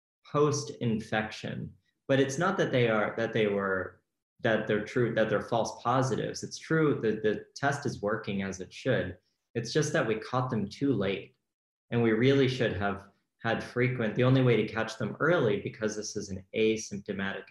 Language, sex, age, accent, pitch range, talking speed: English, male, 20-39, American, 100-120 Hz, 185 wpm